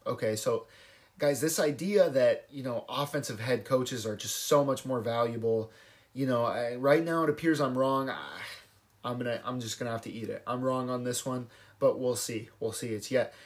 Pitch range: 120-165 Hz